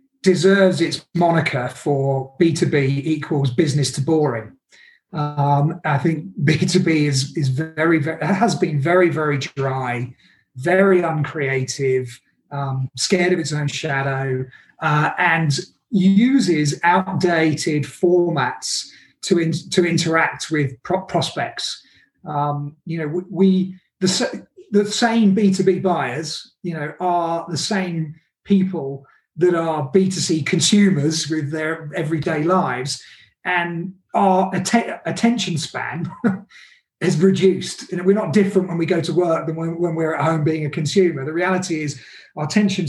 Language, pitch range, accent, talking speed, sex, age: English, 145-180 Hz, British, 135 wpm, male, 30-49